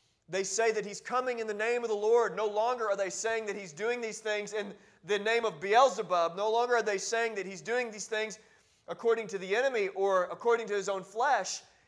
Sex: male